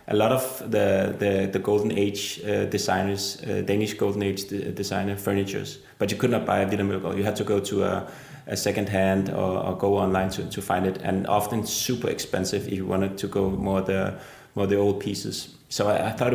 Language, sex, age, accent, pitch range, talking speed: English, male, 20-39, Danish, 100-115 Hz, 220 wpm